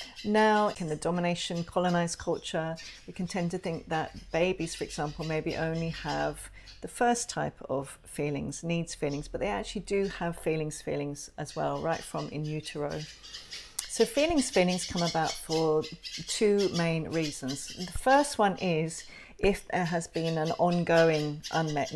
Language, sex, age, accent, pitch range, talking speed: English, female, 40-59, British, 155-195 Hz, 160 wpm